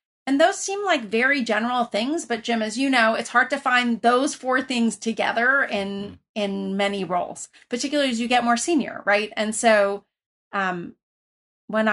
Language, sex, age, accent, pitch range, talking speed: English, female, 30-49, American, 195-240 Hz, 175 wpm